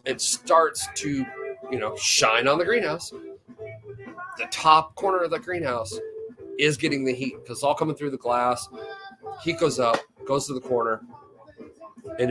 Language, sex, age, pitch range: English, male, 30-49, 120-165 Hz